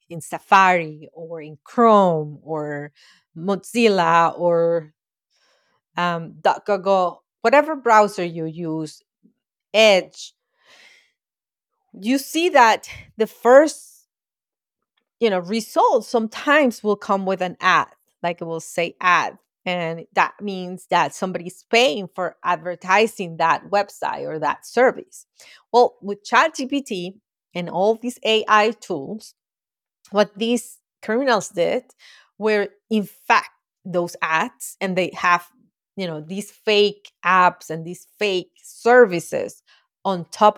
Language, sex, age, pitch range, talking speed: English, female, 30-49, 170-220 Hz, 115 wpm